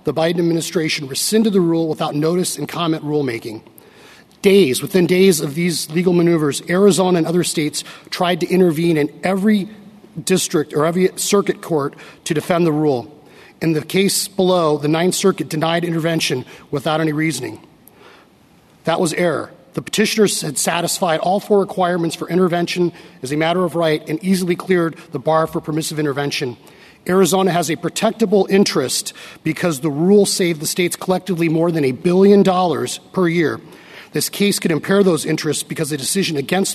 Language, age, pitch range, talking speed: English, 40-59, 155-185 Hz, 165 wpm